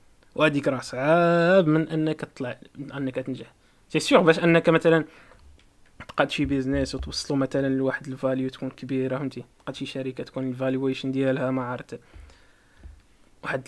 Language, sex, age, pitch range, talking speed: Arabic, male, 20-39, 130-180 Hz, 130 wpm